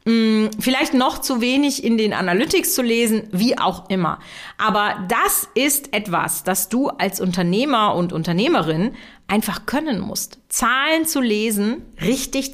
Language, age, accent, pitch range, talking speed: German, 40-59, German, 210-270 Hz, 140 wpm